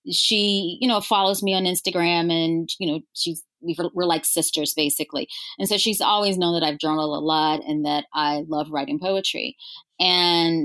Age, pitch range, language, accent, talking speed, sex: 30-49, 155-195 Hz, English, American, 180 wpm, female